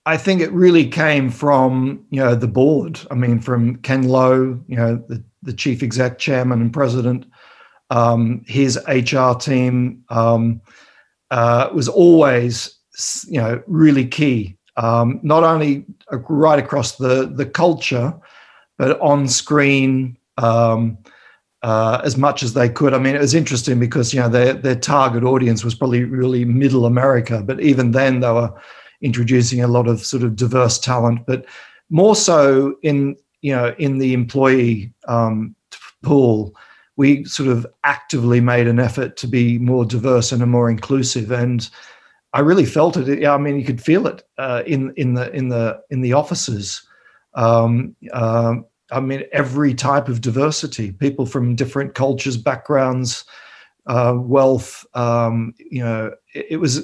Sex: male